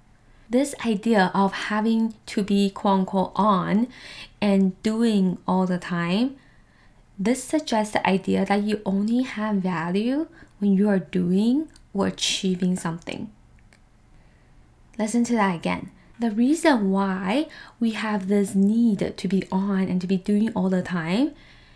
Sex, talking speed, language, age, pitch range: female, 140 wpm, English, 10-29, 185-220 Hz